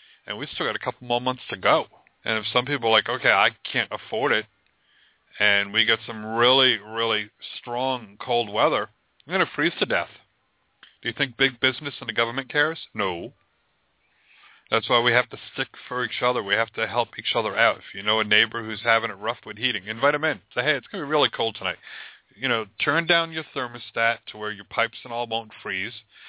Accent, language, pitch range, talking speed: American, English, 105-130 Hz, 225 wpm